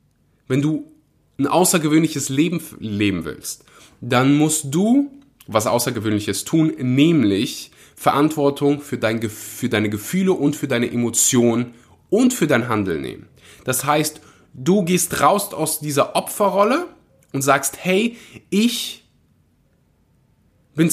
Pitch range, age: 125-160 Hz, 20-39